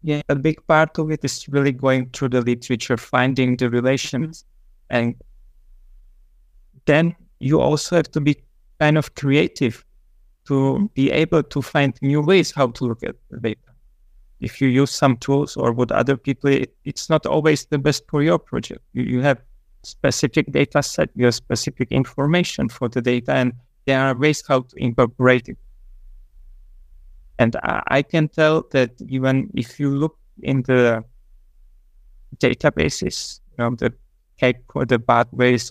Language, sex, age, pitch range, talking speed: English, male, 30-49, 120-140 Hz, 160 wpm